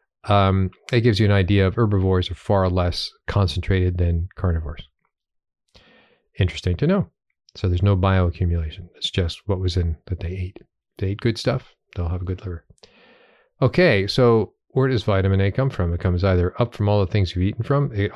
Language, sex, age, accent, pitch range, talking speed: English, male, 40-59, American, 95-115 Hz, 190 wpm